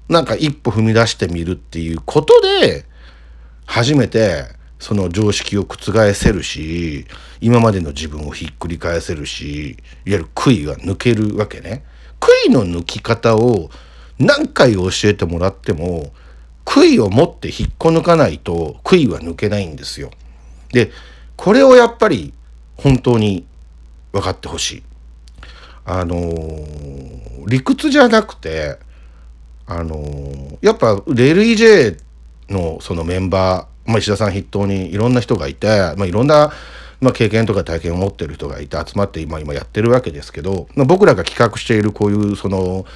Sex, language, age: male, Japanese, 50-69